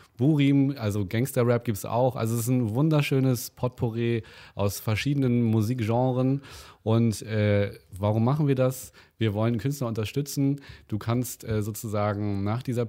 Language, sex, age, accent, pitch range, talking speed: German, male, 30-49, German, 100-120 Hz, 145 wpm